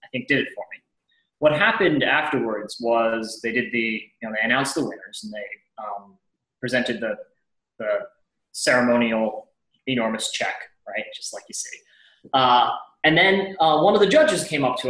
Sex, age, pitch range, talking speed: male, 20-39, 125-170 Hz, 175 wpm